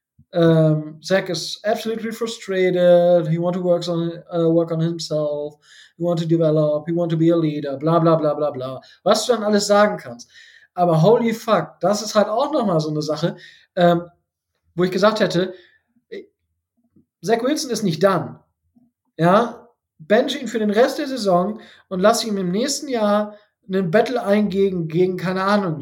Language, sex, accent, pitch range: German, male, German, 165-210 Hz